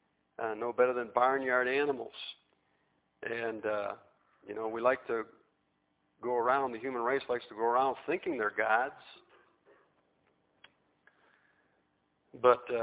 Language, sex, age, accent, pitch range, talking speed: English, male, 50-69, American, 115-140 Hz, 120 wpm